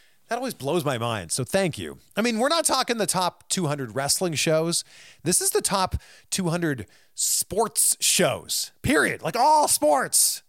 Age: 40-59